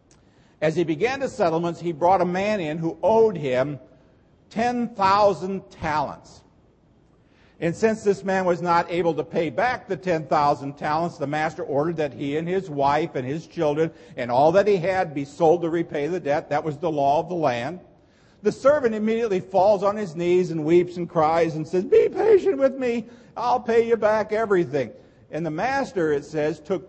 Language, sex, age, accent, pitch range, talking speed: English, male, 50-69, American, 155-205 Hz, 190 wpm